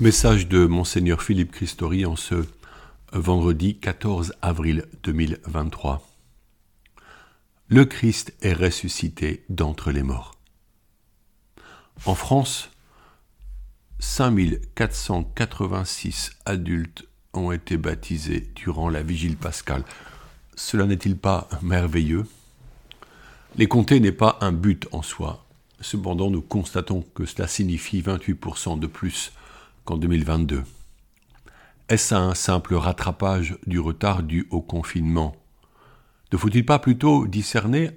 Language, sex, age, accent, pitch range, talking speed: French, male, 50-69, French, 85-105 Hz, 105 wpm